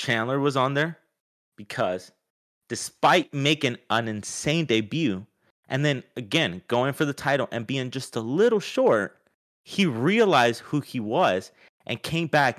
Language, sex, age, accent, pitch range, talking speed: English, male, 30-49, American, 105-145 Hz, 150 wpm